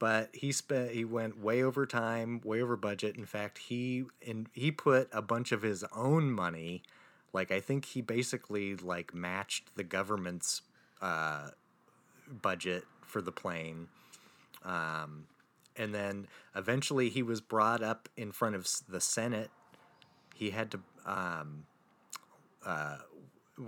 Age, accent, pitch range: 30-49, American, 90-120 Hz